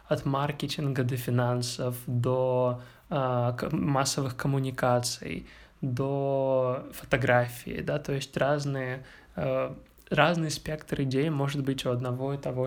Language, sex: Russian, male